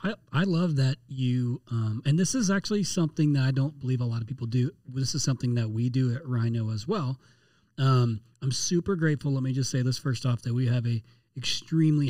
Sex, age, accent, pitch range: male, 30-49, American, 125-150 Hz